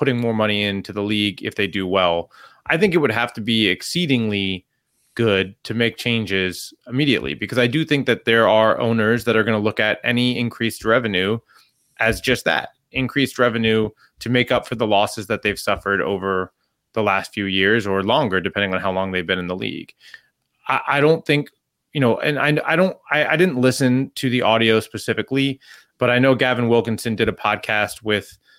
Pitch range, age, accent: 95-120 Hz, 30-49, American